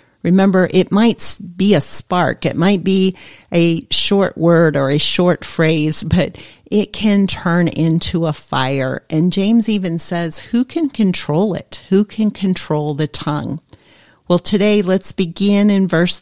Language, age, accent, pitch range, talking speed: English, 40-59, American, 160-200 Hz, 155 wpm